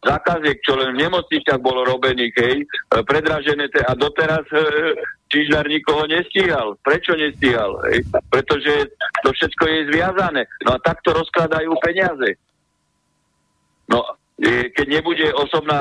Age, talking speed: 50-69, 120 wpm